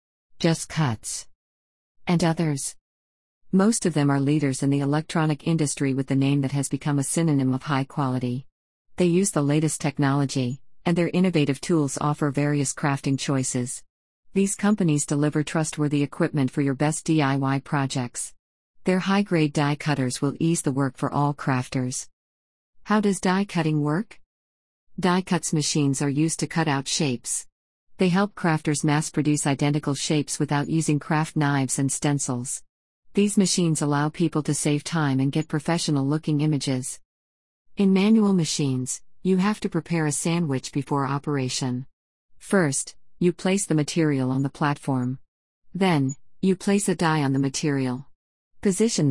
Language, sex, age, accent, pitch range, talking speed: English, female, 50-69, American, 135-165 Hz, 150 wpm